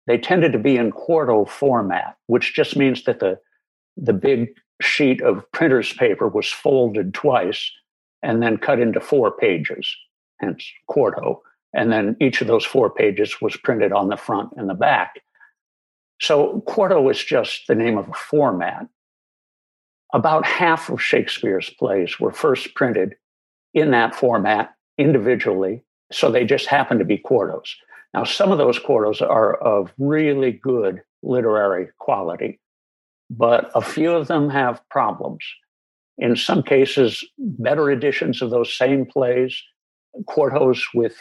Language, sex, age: English, male, 60-79